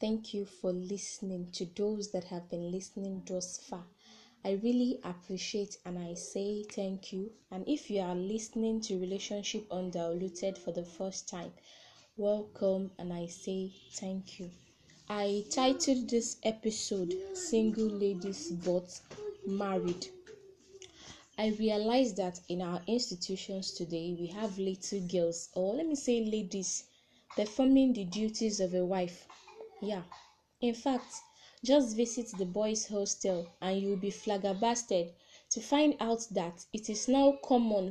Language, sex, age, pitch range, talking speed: English, female, 10-29, 190-245 Hz, 140 wpm